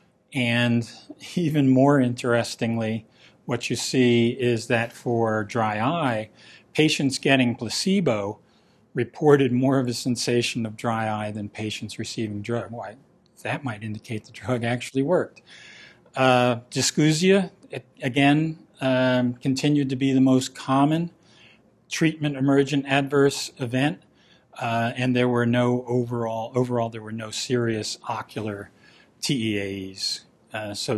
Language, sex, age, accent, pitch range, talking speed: English, male, 40-59, American, 115-135 Hz, 120 wpm